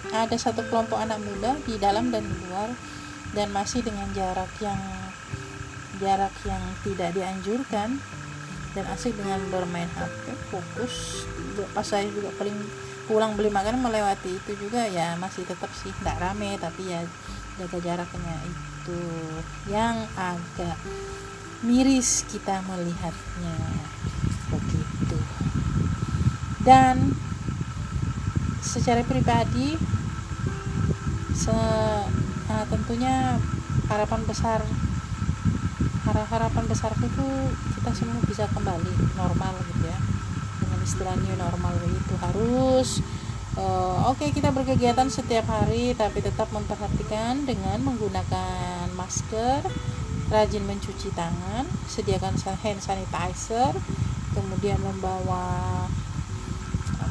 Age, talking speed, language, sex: 30-49, 100 wpm, Indonesian, female